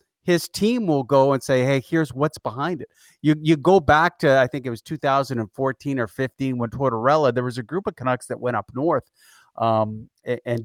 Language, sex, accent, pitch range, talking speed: English, male, American, 125-165 Hz, 215 wpm